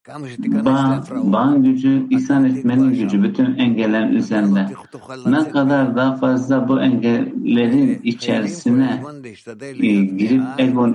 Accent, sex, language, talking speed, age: Turkish, male, English, 105 wpm, 60-79